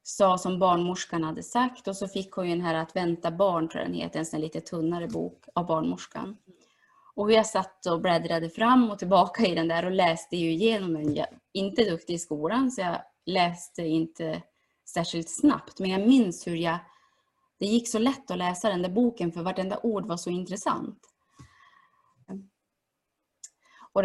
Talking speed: 180 wpm